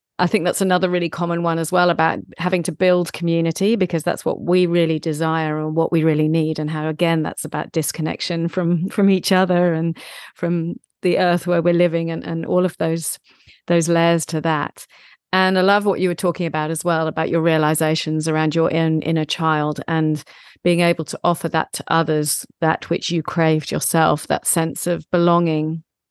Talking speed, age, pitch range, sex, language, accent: 200 wpm, 40-59, 160-180 Hz, female, English, British